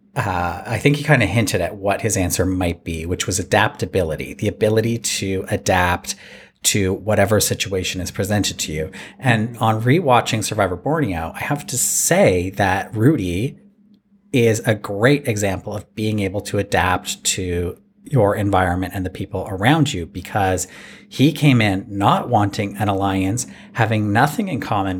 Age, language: 40-59, English